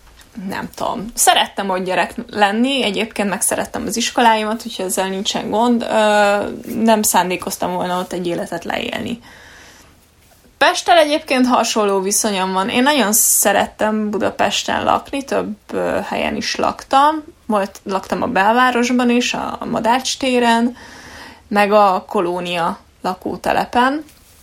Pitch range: 190-235 Hz